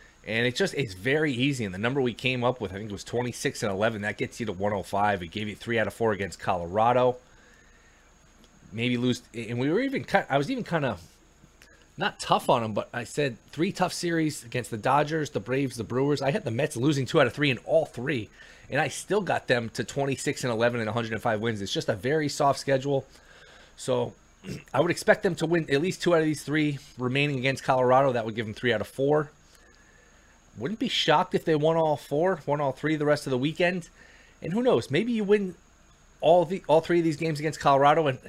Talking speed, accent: 235 wpm, American